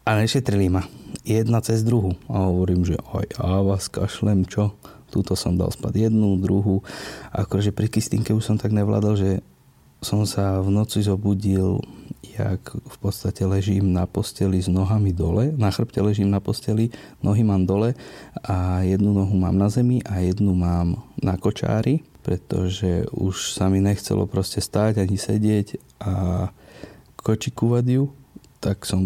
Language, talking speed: Slovak, 155 wpm